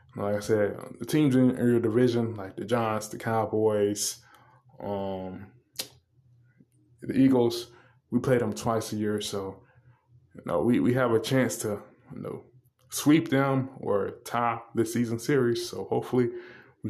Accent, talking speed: American, 155 wpm